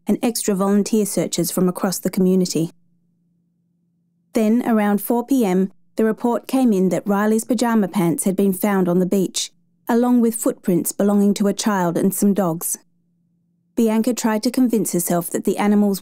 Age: 30-49